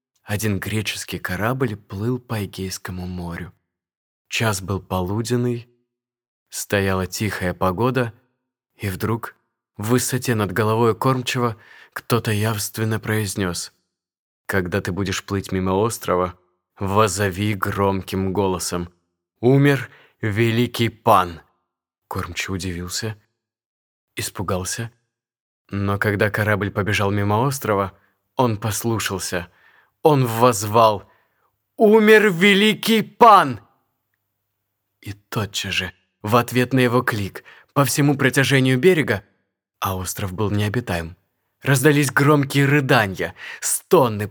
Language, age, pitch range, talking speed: Russian, 20-39, 100-125 Hz, 95 wpm